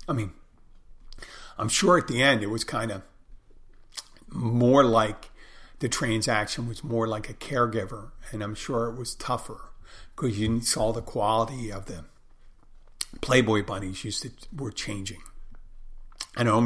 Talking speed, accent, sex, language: 150 wpm, American, male, English